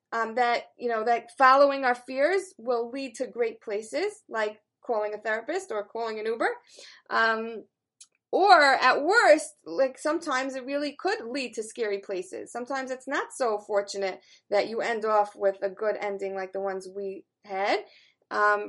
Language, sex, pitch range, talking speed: English, female, 210-275 Hz, 170 wpm